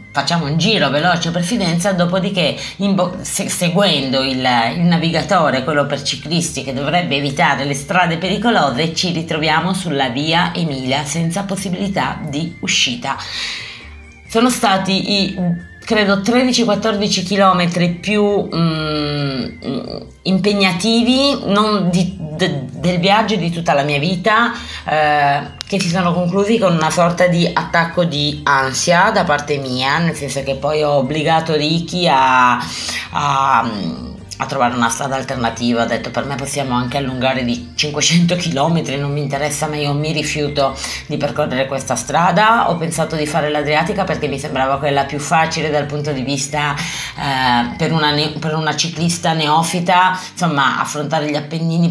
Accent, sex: native, female